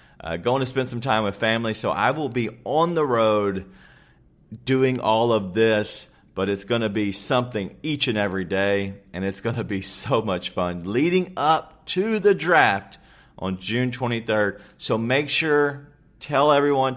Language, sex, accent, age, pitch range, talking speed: English, male, American, 40-59, 105-130 Hz, 175 wpm